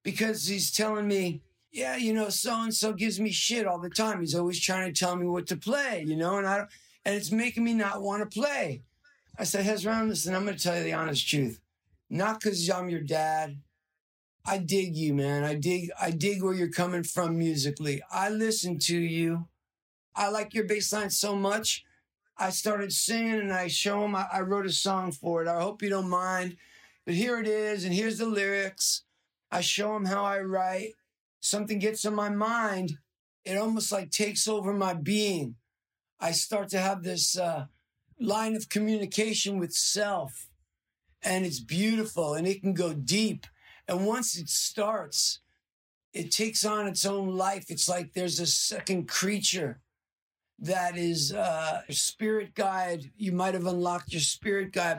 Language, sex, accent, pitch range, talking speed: English, male, American, 170-210 Hz, 190 wpm